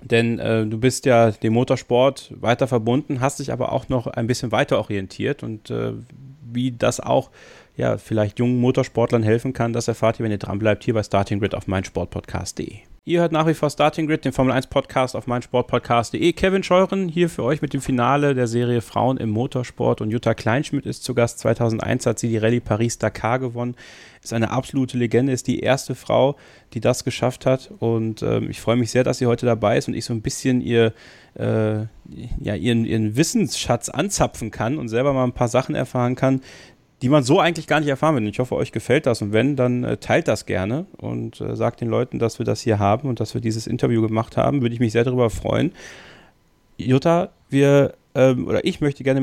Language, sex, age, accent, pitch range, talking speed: German, male, 30-49, German, 115-135 Hz, 215 wpm